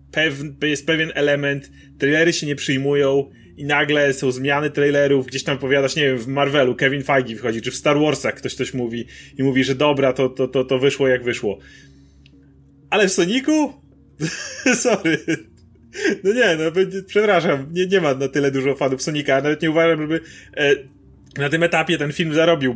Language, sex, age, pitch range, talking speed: Polish, male, 30-49, 135-165 Hz, 170 wpm